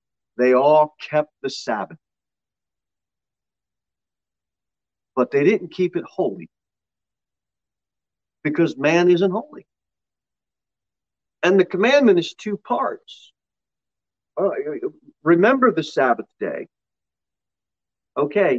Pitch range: 115-170 Hz